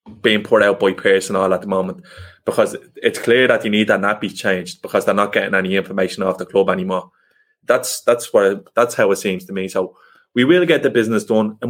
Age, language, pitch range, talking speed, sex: 20-39, English, 100-125 Hz, 230 wpm, male